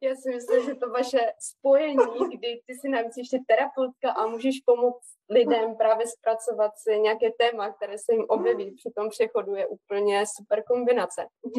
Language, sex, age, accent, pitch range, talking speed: Czech, female, 20-39, native, 210-260 Hz, 170 wpm